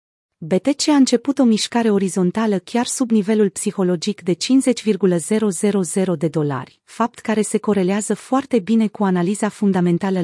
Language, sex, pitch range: Romanian, female, 175-225 Hz